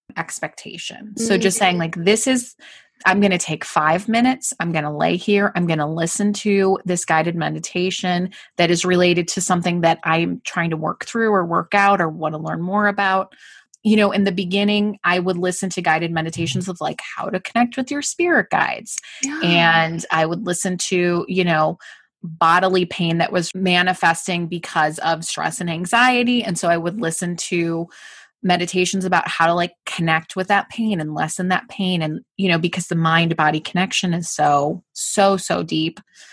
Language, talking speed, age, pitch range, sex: English, 190 wpm, 20-39, 170-205 Hz, female